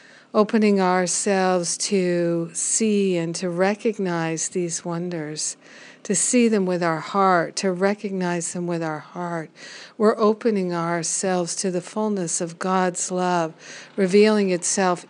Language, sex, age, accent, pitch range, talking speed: English, female, 60-79, American, 175-200 Hz, 125 wpm